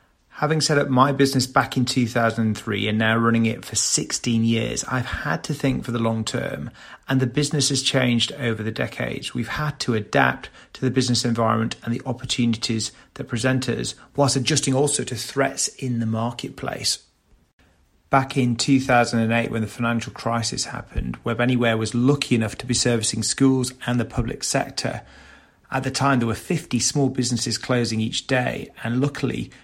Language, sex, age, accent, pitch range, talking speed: English, male, 30-49, British, 115-135 Hz, 175 wpm